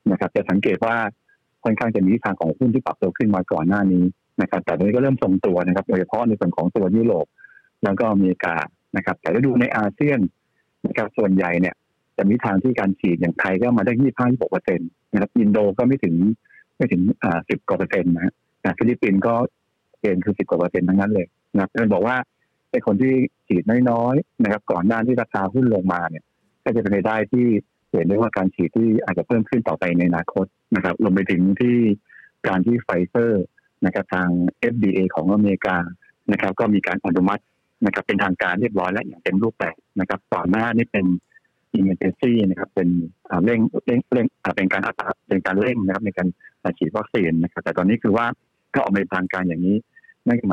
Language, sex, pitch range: Thai, male, 90-115 Hz